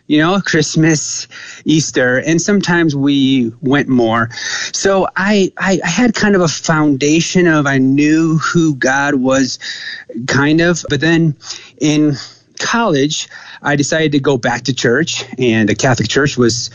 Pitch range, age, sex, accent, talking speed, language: 130-165 Hz, 30-49, male, American, 145 wpm, English